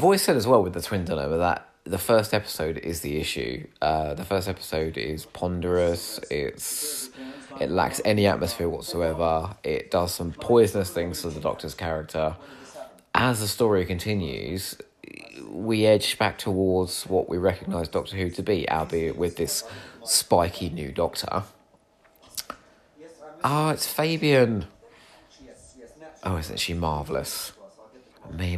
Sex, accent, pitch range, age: male, British, 85-130 Hz, 30-49